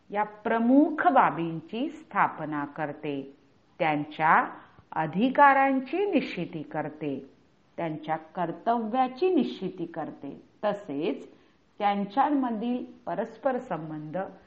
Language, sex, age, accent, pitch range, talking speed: Hindi, female, 40-59, native, 160-250 Hz, 65 wpm